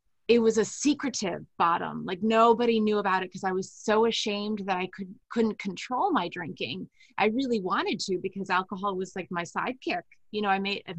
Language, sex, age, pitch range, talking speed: English, female, 30-49, 200-235 Hz, 210 wpm